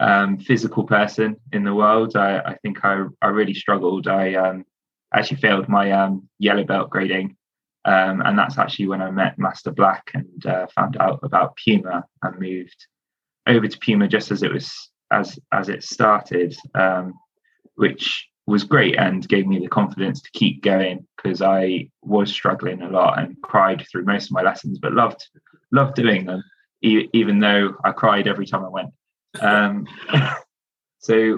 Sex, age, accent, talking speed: male, 20-39, British, 175 wpm